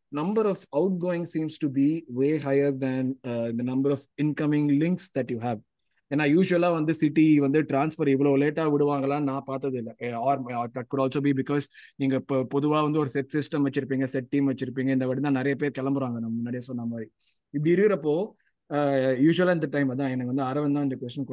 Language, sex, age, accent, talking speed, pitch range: Tamil, male, 20-39, native, 205 wpm, 135-155 Hz